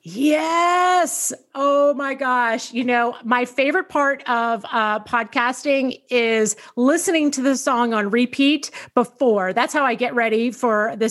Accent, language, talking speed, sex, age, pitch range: American, English, 145 wpm, female, 30-49, 215-275 Hz